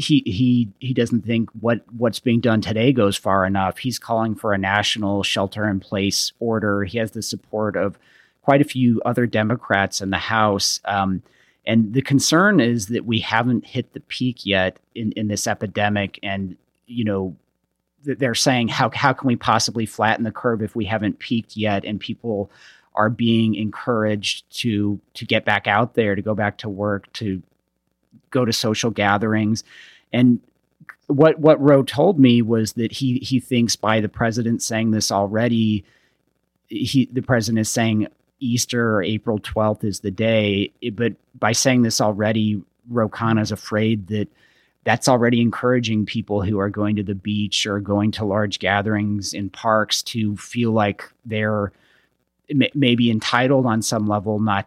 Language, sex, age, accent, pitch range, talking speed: English, male, 40-59, American, 105-120 Hz, 170 wpm